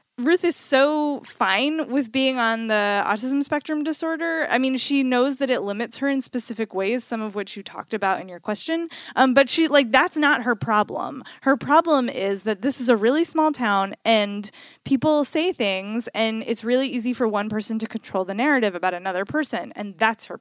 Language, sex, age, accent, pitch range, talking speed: English, female, 20-39, American, 205-265 Hz, 205 wpm